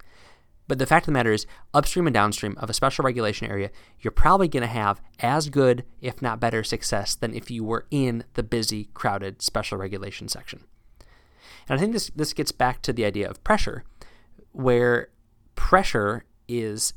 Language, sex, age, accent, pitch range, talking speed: English, male, 20-39, American, 100-125 Hz, 185 wpm